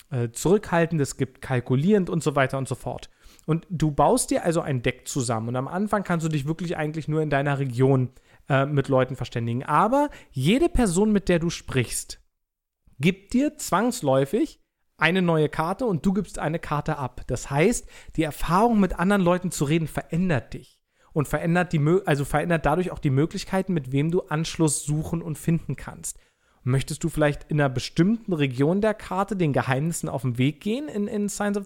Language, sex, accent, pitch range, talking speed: German, male, German, 135-180 Hz, 185 wpm